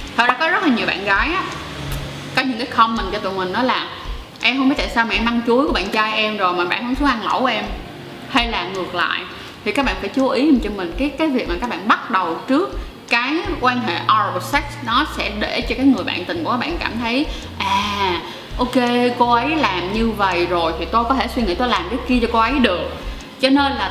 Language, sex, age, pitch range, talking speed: Vietnamese, female, 20-39, 200-270 Hz, 260 wpm